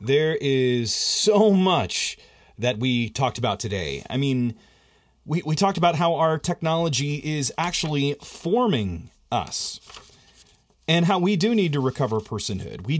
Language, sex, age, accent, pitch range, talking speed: English, male, 30-49, American, 130-190 Hz, 145 wpm